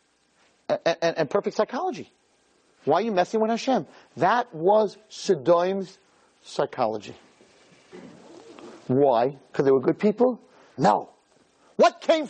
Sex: male